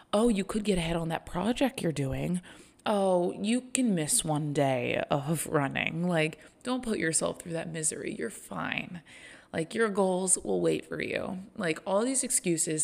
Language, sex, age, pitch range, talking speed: English, female, 20-39, 165-235 Hz, 180 wpm